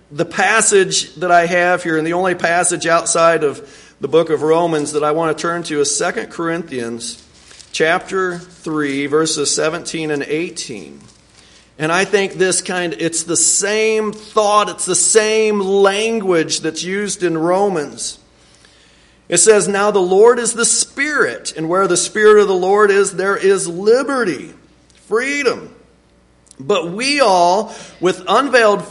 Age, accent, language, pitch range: 50-69, American, English, 170-230 Hz